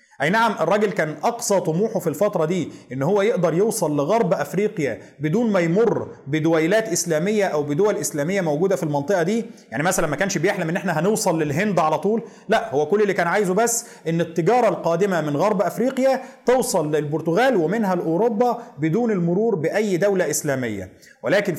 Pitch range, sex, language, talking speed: 160-215 Hz, male, Arabic, 170 wpm